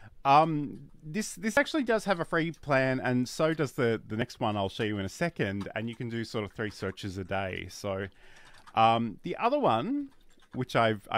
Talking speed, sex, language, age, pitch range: 210 wpm, male, English, 30-49, 105-140 Hz